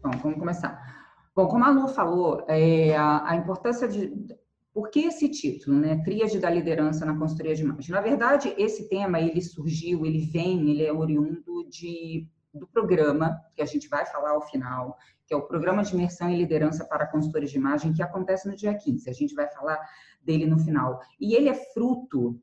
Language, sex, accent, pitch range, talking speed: Portuguese, female, Brazilian, 150-200 Hz, 200 wpm